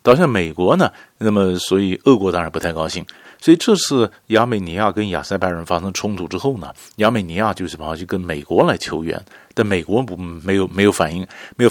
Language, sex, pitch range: Chinese, male, 85-105 Hz